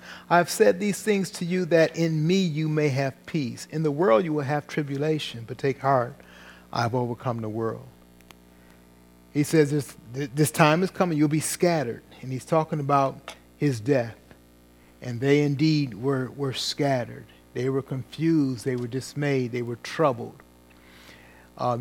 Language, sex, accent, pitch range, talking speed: English, male, American, 115-150 Hz, 160 wpm